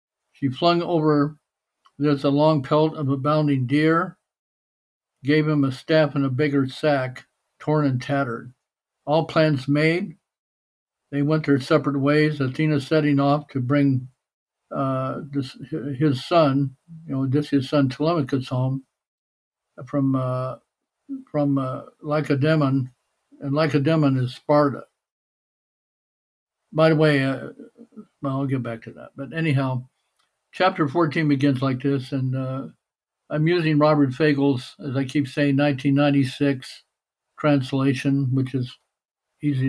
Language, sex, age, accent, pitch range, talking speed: English, male, 60-79, American, 135-150 Hz, 130 wpm